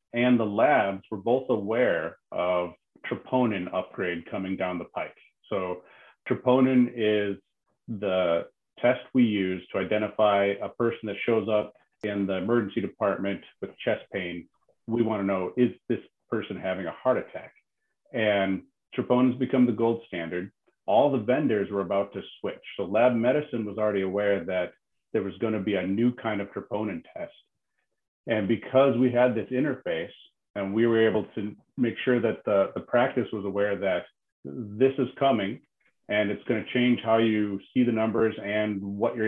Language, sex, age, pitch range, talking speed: English, male, 40-59, 100-125 Hz, 175 wpm